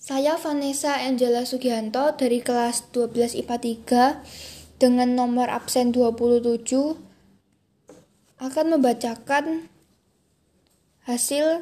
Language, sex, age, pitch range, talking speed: Indonesian, female, 10-29, 235-285 Hz, 85 wpm